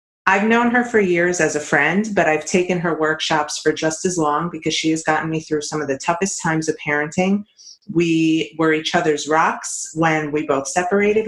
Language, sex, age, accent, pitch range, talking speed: English, female, 30-49, American, 150-185 Hz, 205 wpm